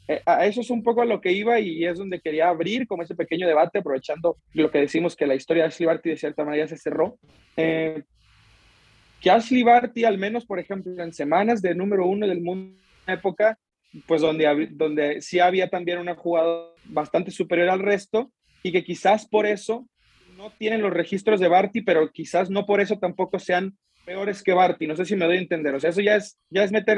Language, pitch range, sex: Spanish, 160-195 Hz, male